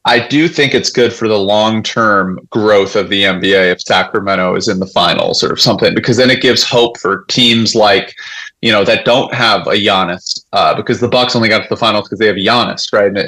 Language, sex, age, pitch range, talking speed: English, male, 30-49, 105-125 Hz, 220 wpm